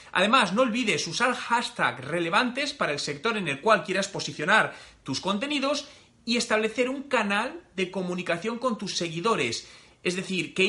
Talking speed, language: 155 wpm, Spanish